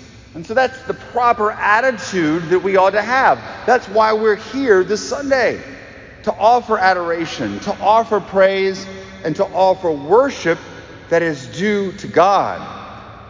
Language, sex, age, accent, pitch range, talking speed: English, male, 40-59, American, 135-195 Hz, 145 wpm